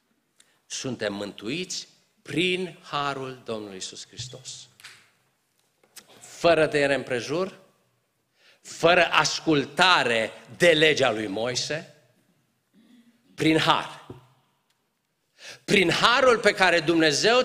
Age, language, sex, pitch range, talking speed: 50-69, Romanian, male, 125-180 Hz, 80 wpm